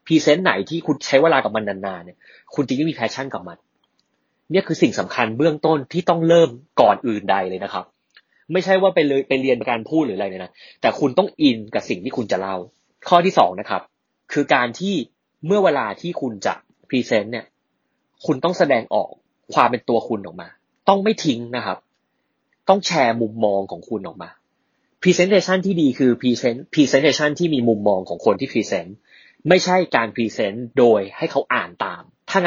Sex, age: male, 20-39